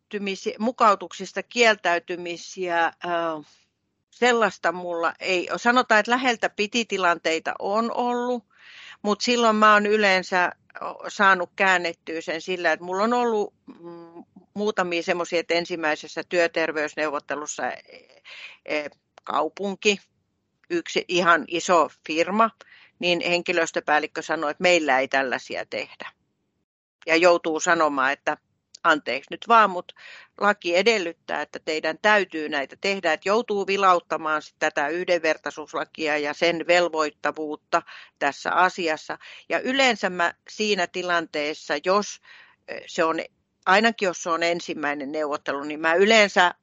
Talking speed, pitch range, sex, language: 110 wpm, 155-190 Hz, female, Finnish